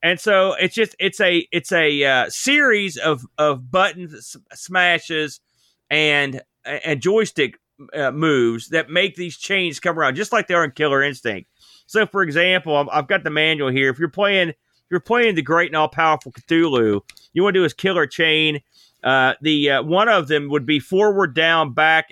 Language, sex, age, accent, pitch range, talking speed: English, male, 40-59, American, 150-190 Hz, 190 wpm